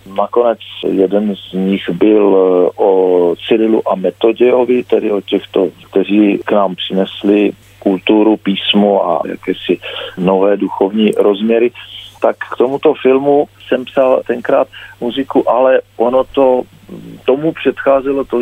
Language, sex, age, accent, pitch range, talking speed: Czech, male, 50-69, native, 105-130 Hz, 120 wpm